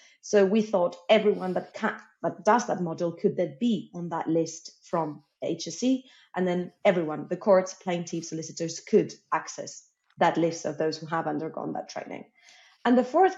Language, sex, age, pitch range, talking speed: English, female, 30-49, 160-190 Hz, 170 wpm